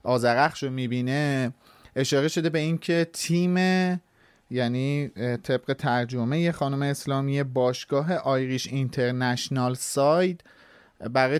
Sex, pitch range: male, 130-170 Hz